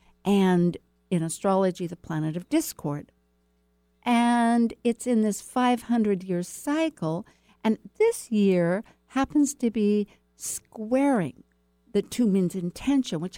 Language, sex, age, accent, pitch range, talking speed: English, female, 60-79, American, 150-220 Hz, 110 wpm